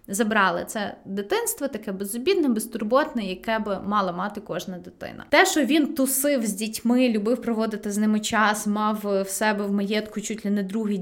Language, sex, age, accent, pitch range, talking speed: Ukrainian, female, 20-39, native, 205-255 Hz, 175 wpm